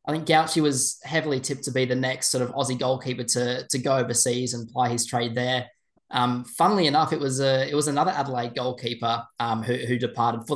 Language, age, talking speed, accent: English, 10-29, 220 wpm, Australian